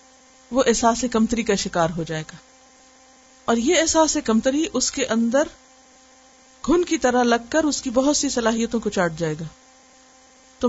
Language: Urdu